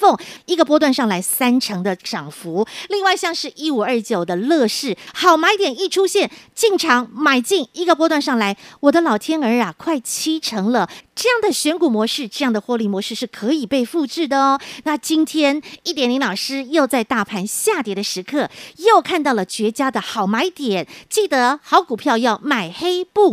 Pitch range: 245-360 Hz